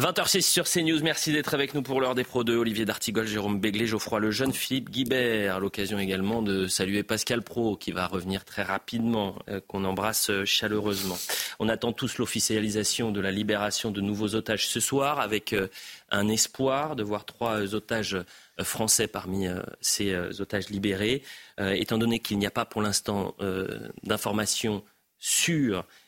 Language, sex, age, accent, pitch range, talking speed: French, male, 30-49, French, 100-120 Hz, 165 wpm